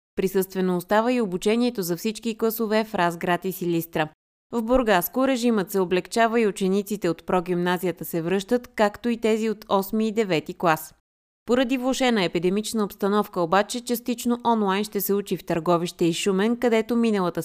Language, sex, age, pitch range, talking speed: Bulgarian, female, 20-39, 180-225 Hz, 160 wpm